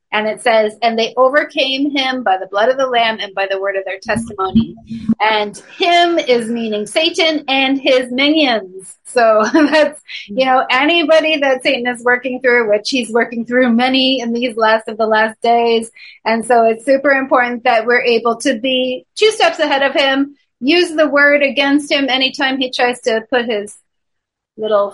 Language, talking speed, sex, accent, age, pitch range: English, 185 wpm, female, American, 30-49, 220-275 Hz